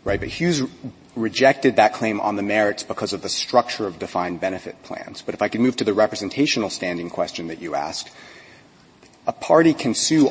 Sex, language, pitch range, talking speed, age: male, English, 105-140 Hz, 200 wpm, 30-49